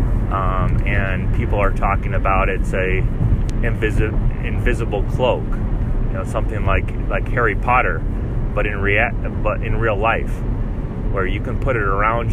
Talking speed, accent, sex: 150 wpm, American, male